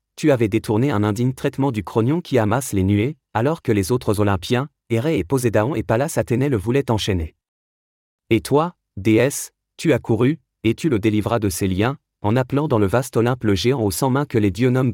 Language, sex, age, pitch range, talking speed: French, male, 40-59, 105-135 Hz, 215 wpm